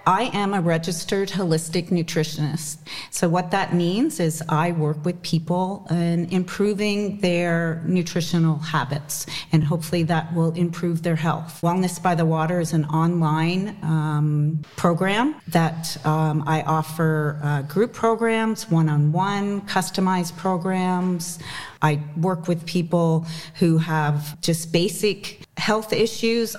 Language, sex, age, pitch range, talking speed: English, female, 40-59, 155-185 Hz, 125 wpm